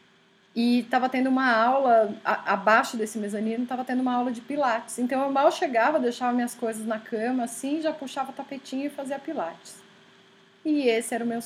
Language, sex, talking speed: Portuguese, female, 190 wpm